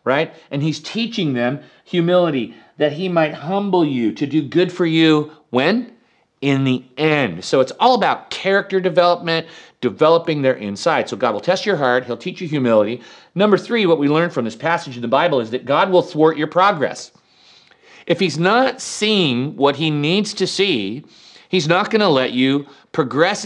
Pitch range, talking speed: 135-185 Hz, 185 wpm